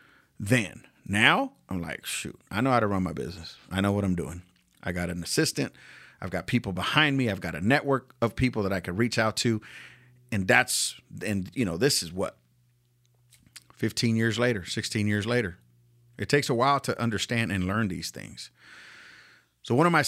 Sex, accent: male, American